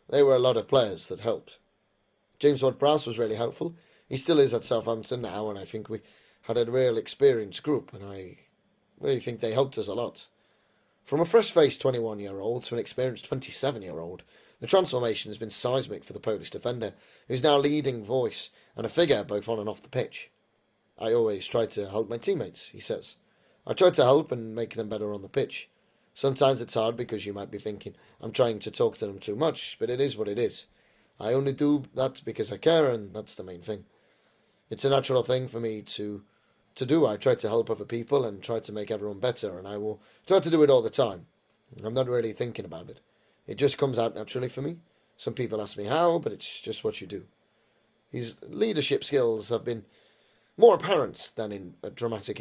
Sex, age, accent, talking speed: male, 30-49, British, 215 wpm